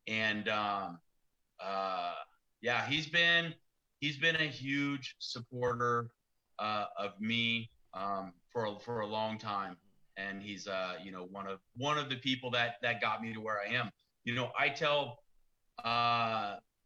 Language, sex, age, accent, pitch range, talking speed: English, male, 30-49, American, 100-130 Hz, 160 wpm